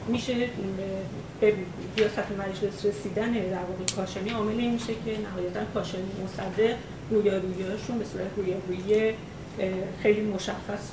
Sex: female